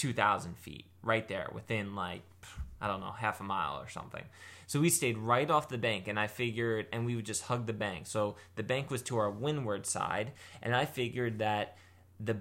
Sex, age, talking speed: male, 20-39, 215 wpm